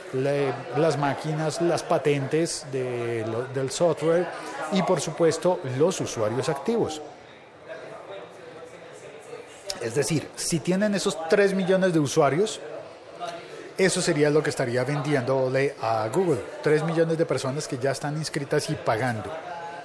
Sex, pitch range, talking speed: male, 140-185 Hz, 125 wpm